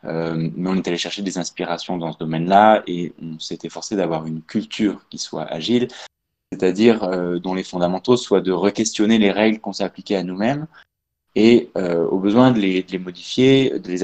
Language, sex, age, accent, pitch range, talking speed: French, male, 20-39, French, 85-105 Hz, 195 wpm